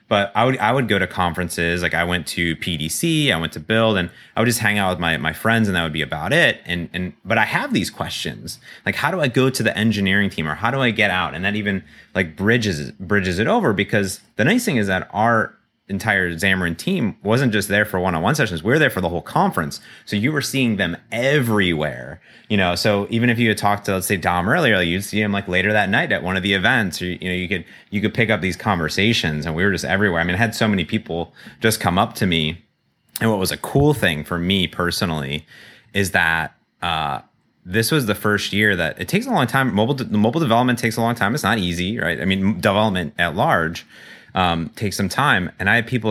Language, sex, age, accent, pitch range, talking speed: English, male, 30-49, American, 90-110 Hz, 250 wpm